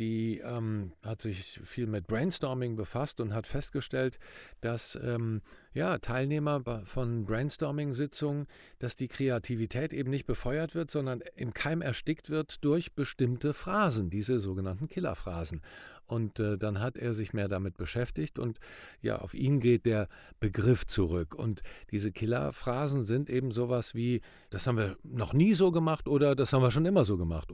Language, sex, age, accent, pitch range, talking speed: German, male, 50-69, German, 105-140 Hz, 160 wpm